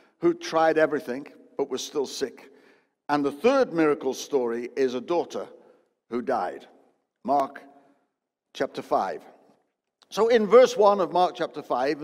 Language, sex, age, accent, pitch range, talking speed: English, male, 60-79, British, 130-170 Hz, 140 wpm